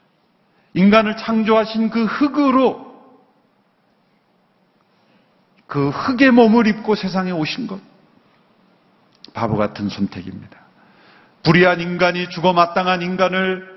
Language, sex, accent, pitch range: Korean, male, native, 160-215 Hz